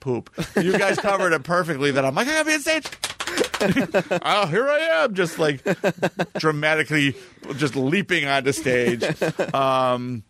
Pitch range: 120-150 Hz